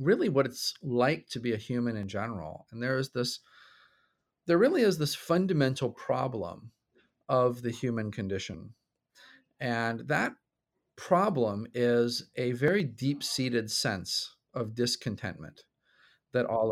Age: 40-59